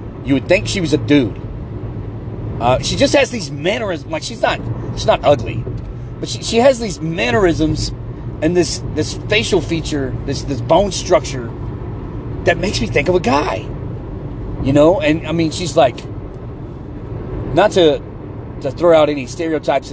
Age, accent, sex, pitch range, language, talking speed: 30-49, American, male, 110-135 Hz, English, 165 wpm